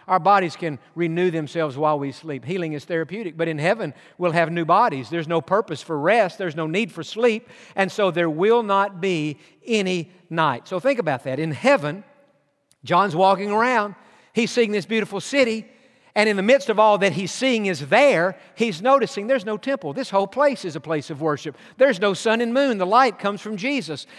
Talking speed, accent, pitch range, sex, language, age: 210 wpm, American, 175-230 Hz, male, English, 50-69